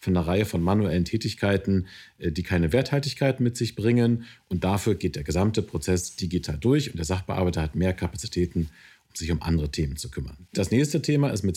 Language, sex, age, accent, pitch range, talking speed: German, male, 40-59, German, 95-120 Hz, 200 wpm